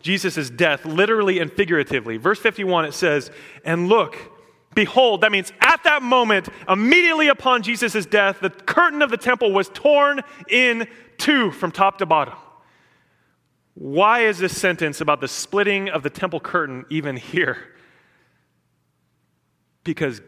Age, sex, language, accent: 30-49, male, English, American